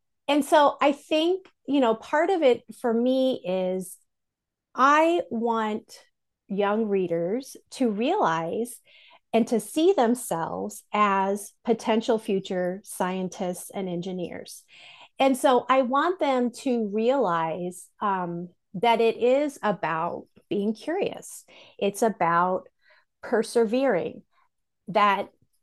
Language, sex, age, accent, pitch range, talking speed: English, female, 30-49, American, 195-260 Hz, 110 wpm